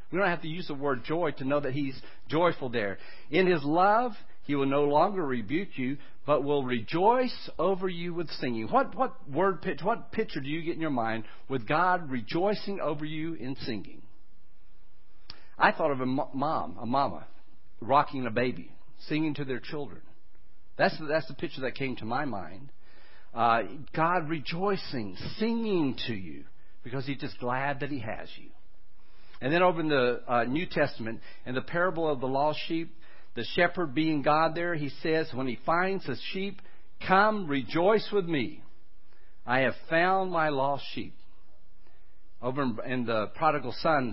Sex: male